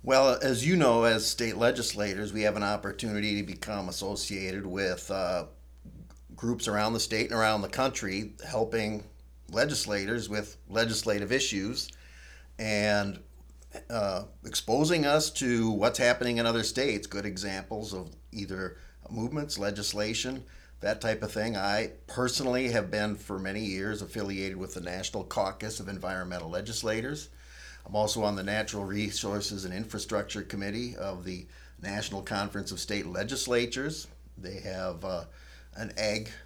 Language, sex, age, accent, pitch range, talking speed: English, male, 50-69, American, 95-110 Hz, 140 wpm